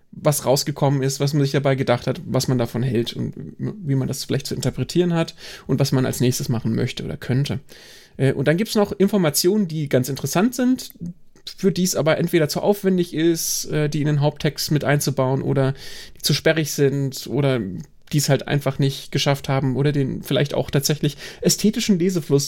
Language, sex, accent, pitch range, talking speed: German, male, German, 135-170 Hz, 200 wpm